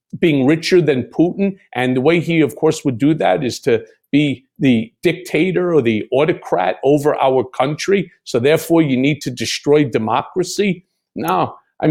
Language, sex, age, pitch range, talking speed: English, male, 50-69, 145-195 Hz, 165 wpm